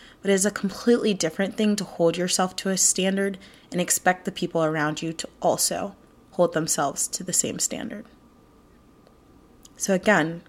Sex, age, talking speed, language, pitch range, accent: female, 20-39, 165 wpm, English, 160-210 Hz, American